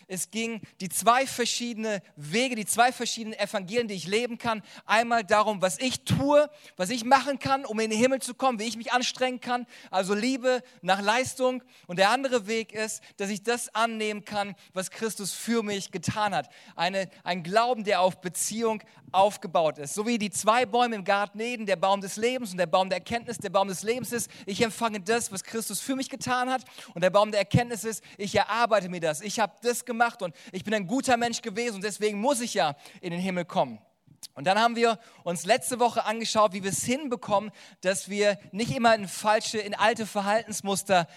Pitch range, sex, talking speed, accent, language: 195-235 Hz, male, 210 wpm, German, German